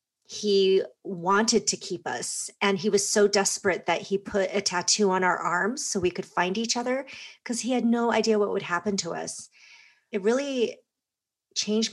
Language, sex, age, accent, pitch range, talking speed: English, female, 40-59, American, 185-210 Hz, 185 wpm